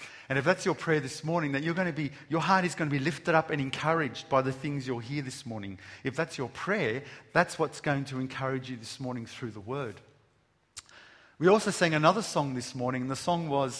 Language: English